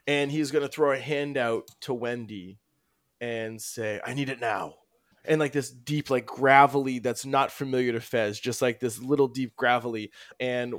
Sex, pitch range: male, 115-145 Hz